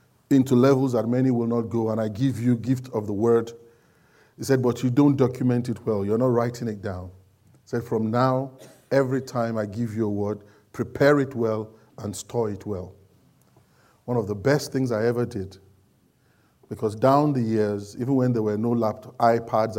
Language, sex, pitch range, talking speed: English, male, 110-130 Hz, 195 wpm